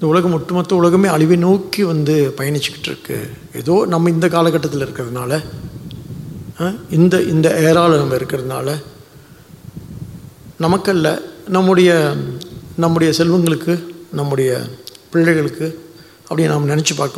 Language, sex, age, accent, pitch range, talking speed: English, male, 60-79, Indian, 145-180 Hz, 80 wpm